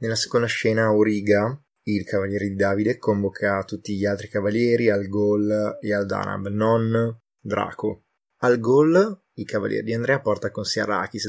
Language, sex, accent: Italian, male, native